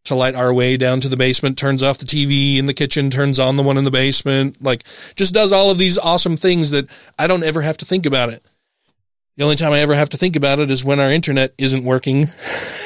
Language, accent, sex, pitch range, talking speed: English, American, male, 125-150 Hz, 255 wpm